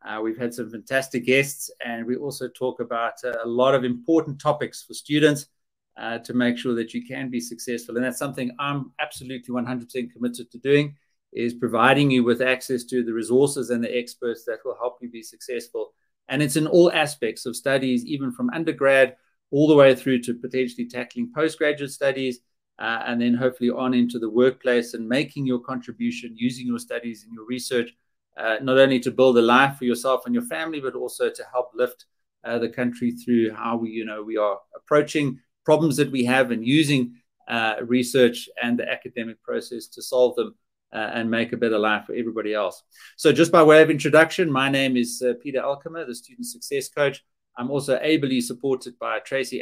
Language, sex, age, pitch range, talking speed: English, male, 30-49, 120-145 Hz, 200 wpm